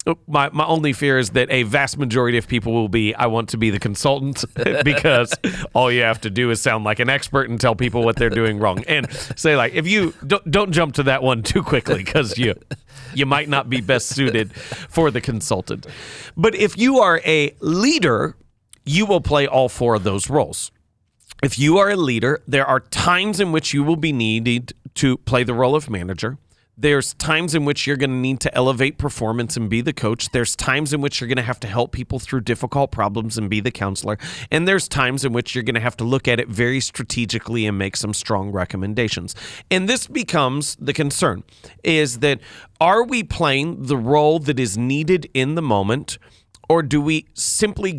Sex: male